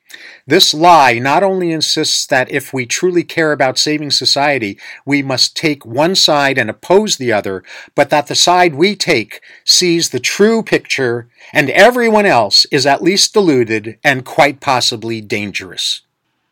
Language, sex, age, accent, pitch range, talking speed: English, male, 50-69, American, 125-160 Hz, 155 wpm